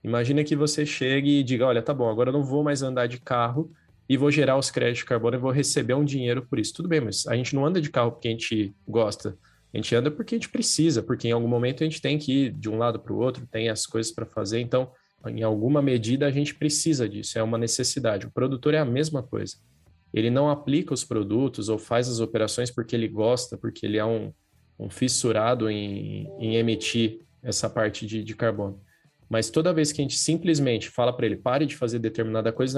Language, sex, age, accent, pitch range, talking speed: Portuguese, male, 20-39, Brazilian, 110-135 Hz, 235 wpm